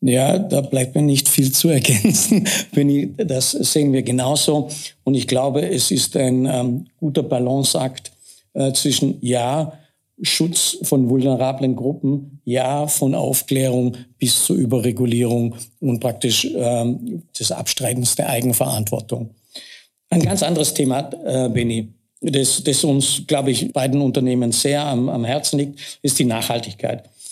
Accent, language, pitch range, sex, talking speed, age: German, German, 130-150 Hz, male, 140 wpm, 60-79